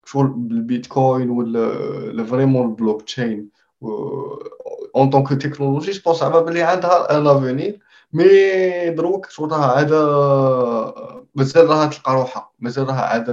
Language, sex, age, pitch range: Arabic, male, 20-39, 120-155 Hz